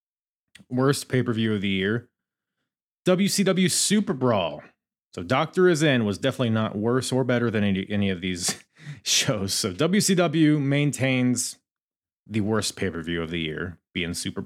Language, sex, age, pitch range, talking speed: English, male, 30-49, 100-150 Hz, 140 wpm